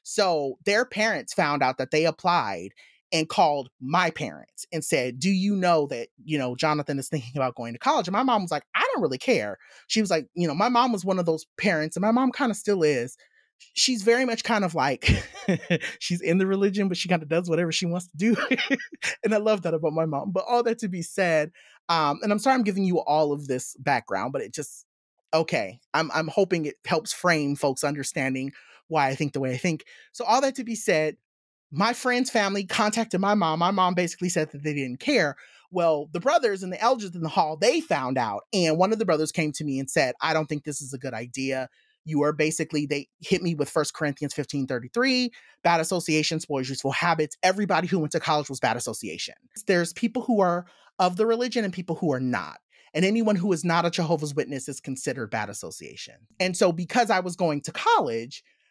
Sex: male